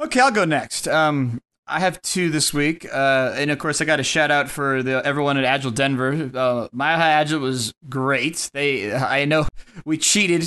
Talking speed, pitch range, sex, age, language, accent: 200 wpm, 135-175 Hz, male, 30-49, English, American